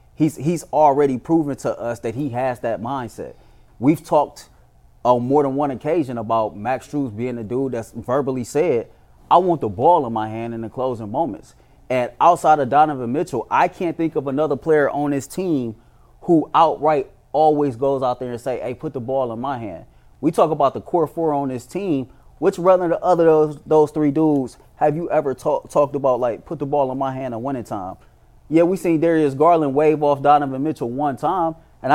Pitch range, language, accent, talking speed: 125-155 Hz, English, American, 210 wpm